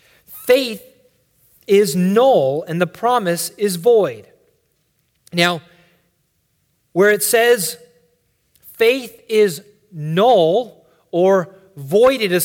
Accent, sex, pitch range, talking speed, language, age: American, male, 175-235 Hz, 85 wpm, English, 30-49